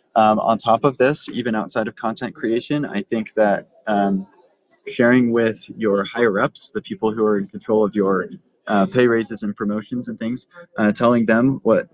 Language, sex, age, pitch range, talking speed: English, male, 20-39, 100-120 Hz, 185 wpm